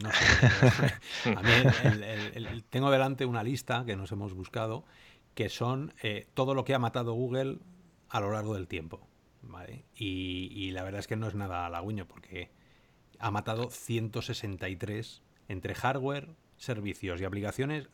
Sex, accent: male, Spanish